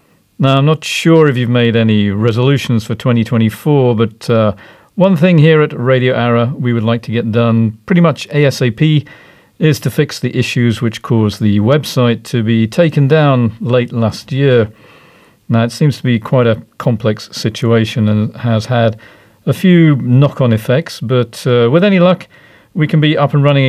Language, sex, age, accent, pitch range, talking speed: English, male, 50-69, British, 115-150 Hz, 180 wpm